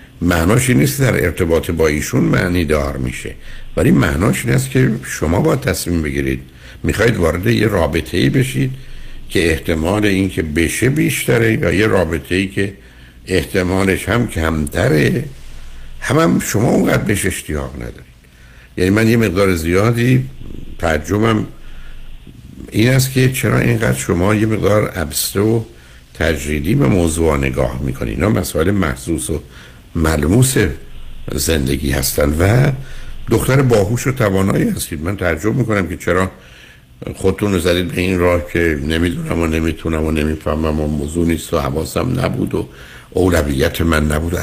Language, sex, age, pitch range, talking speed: Persian, male, 70-89, 75-100 Hz, 130 wpm